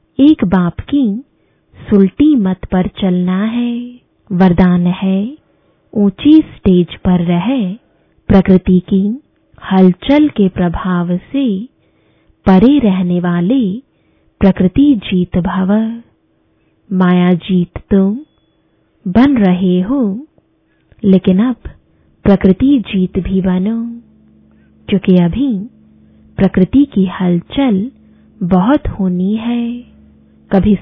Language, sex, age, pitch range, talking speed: English, female, 20-39, 185-235 Hz, 90 wpm